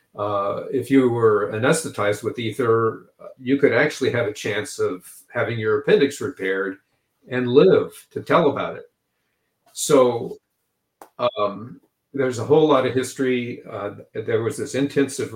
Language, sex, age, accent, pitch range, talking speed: English, male, 50-69, American, 100-130 Hz, 145 wpm